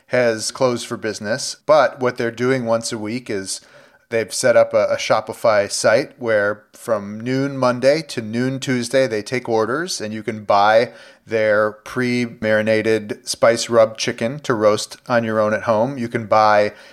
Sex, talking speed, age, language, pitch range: male, 170 wpm, 30-49, English, 115-140 Hz